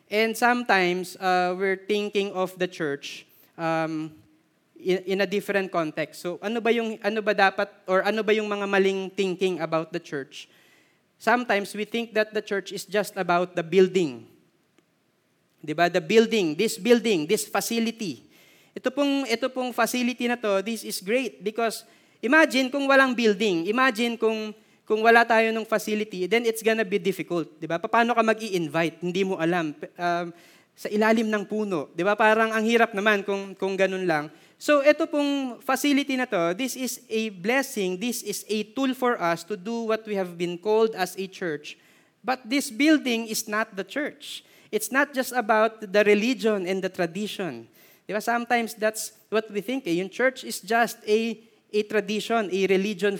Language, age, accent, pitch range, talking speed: Filipino, 20-39, native, 185-230 Hz, 175 wpm